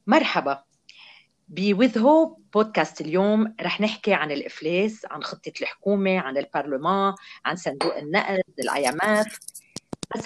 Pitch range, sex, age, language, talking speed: 175-255 Hz, female, 40-59, Arabic, 110 wpm